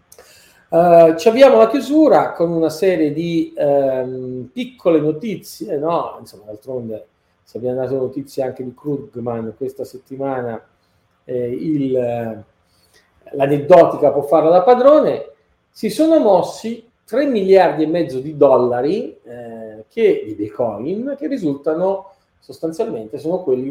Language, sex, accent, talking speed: Italian, male, native, 125 wpm